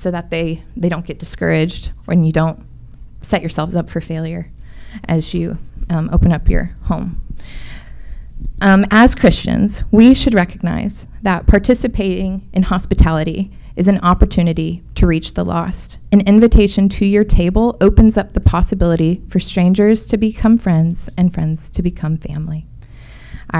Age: 20-39